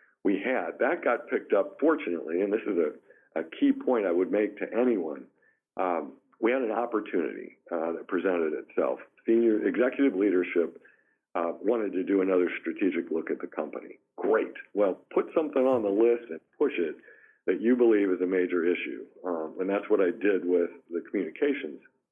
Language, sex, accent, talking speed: English, male, American, 180 wpm